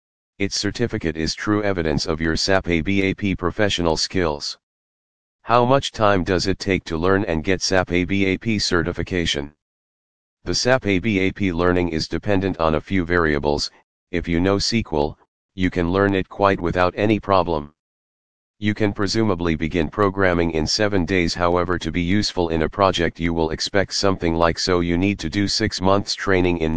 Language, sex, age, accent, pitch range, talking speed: English, male, 40-59, American, 80-100 Hz, 170 wpm